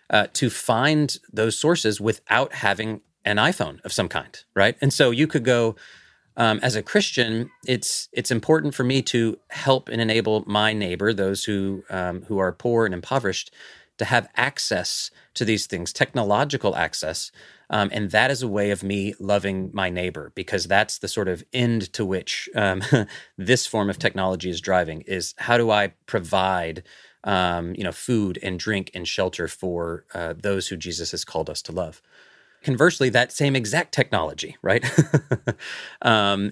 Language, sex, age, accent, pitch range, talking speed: English, male, 30-49, American, 95-115 Hz, 175 wpm